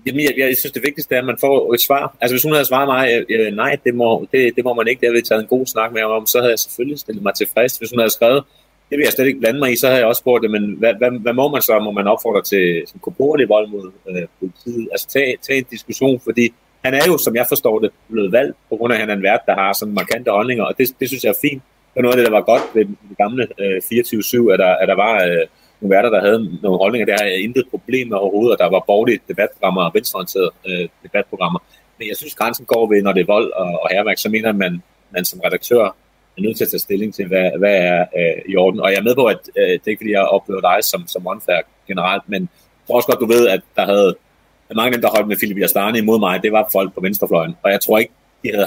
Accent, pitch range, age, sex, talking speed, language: native, 105-130 Hz, 30-49, male, 280 wpm, Danish